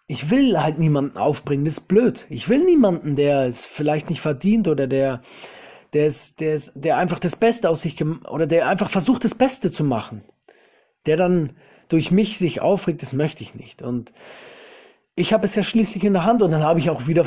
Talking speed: 215 wpm